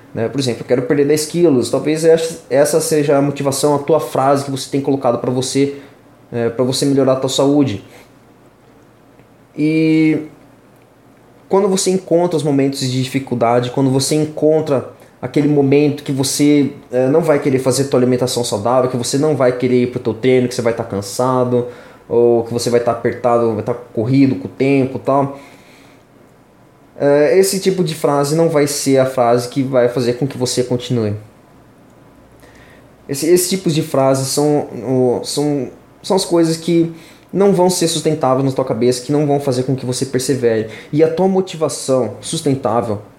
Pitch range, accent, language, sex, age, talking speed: 125-150 Hz, Brazilian, Portuguese, male, 20-39, 175 wpm